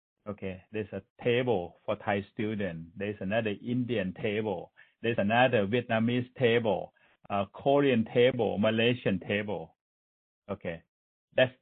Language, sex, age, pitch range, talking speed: English, male, 60-79, 95-120 Hz, 110 wpm